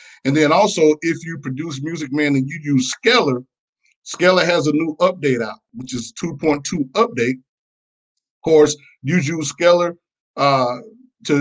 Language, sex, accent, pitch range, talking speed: English, male, American, 120-150 Hz, 160 wpm